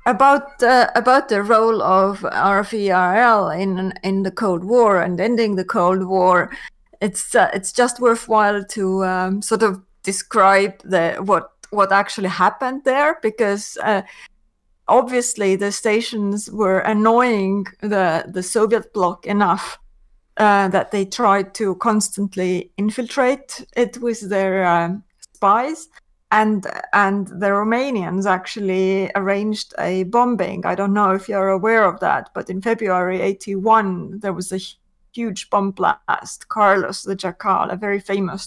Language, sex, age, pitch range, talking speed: English, female, 30-49, 190-220 Hz, 140 wpm